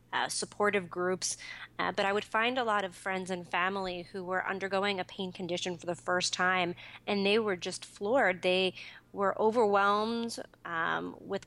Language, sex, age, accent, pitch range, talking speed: English, female, 30-49, American, 180-200 Hz, 180 wpm